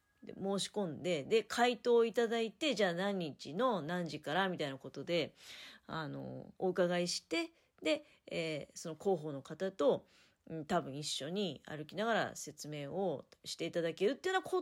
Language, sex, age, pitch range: Japanese, female, 40-59, 155-225 Hz